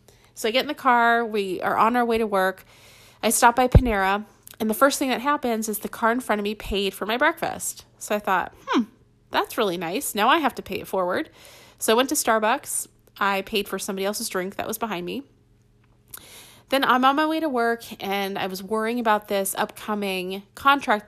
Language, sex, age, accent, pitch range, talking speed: English, female, 30-49, American, 195-245 Hz, 220 wpm